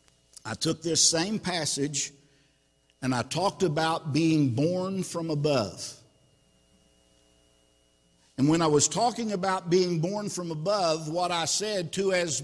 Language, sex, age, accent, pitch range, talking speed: English, male, 50-69, American, 155-230 Hz, 135 wpm